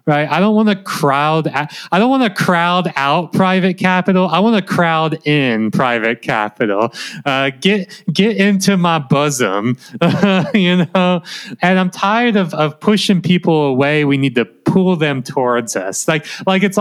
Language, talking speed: English, 170 wpm